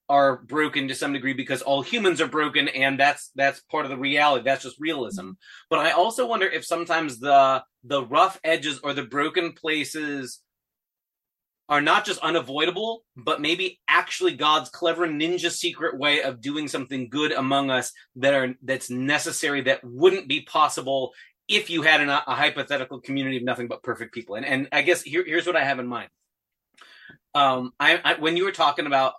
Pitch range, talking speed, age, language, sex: 130-165 Hz, 185 wpm, 30-49, English, male